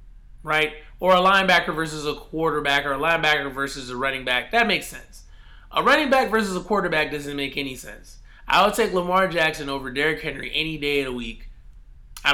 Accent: American